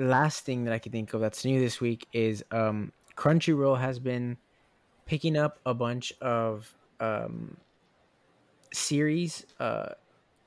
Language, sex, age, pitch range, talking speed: English, male, 20-39, 120-140 Hz, 140 wpm